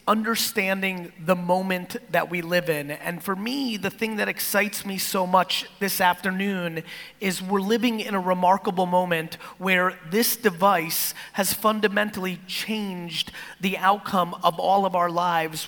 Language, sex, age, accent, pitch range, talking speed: English, male, 30-49, American, 175-215 Hz, 150 wpm